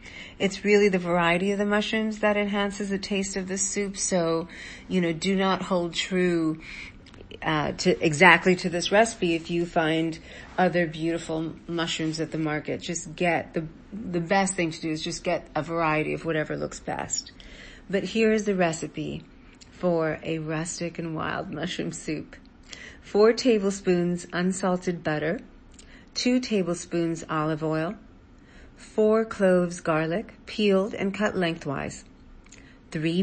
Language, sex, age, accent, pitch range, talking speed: English, female, 50-69, American, 165-195 Hz, 145 wpm